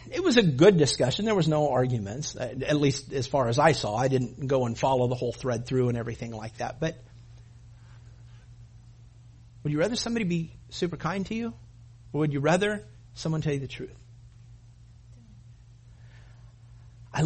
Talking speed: 170 wpm